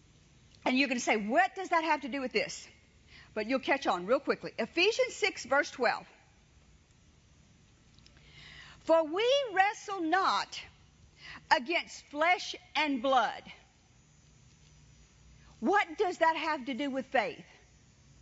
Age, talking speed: 50-69, 130 wpm